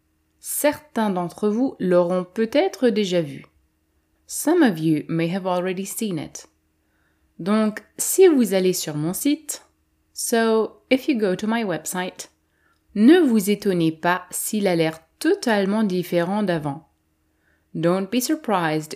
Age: 20-39